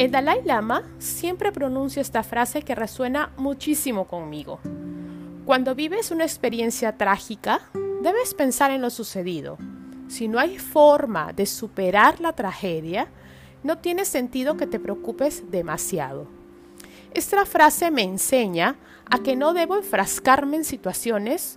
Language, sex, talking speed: Spanish, female, 130 wpm